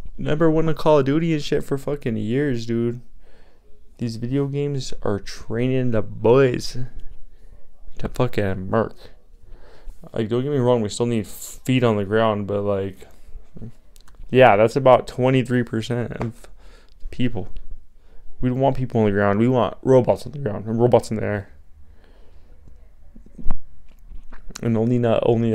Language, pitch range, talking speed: English, 95-125 Hz, 150 wpm